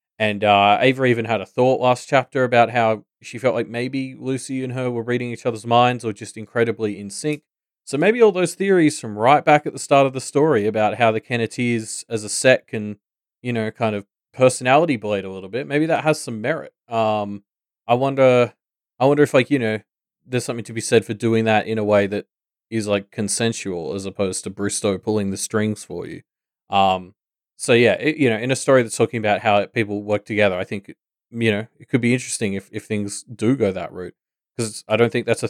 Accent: Australian